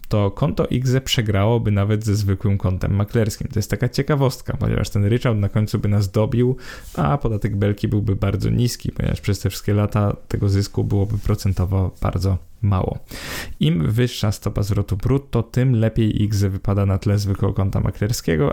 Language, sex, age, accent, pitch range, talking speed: Polish, male, 20-39, native, 100-115 Hz, 170 wpm